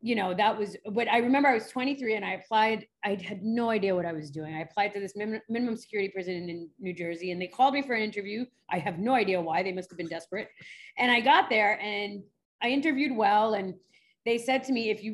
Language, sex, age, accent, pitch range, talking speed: English, female, 30-49, American, 185-230 Hz, 245 wpm